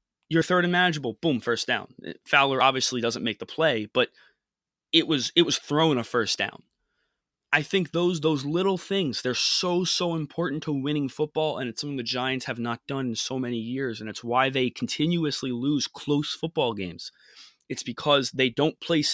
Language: English